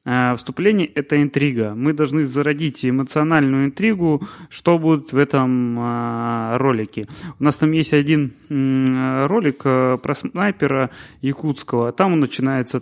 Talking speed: 135 wpm